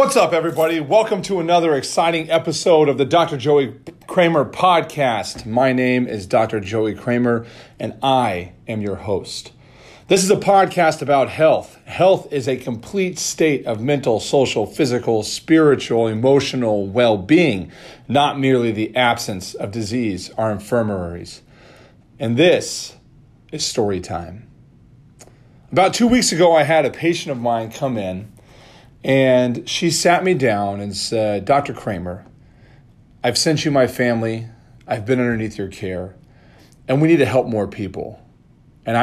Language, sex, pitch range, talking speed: English, male, 110-145 Hz, 145 wpm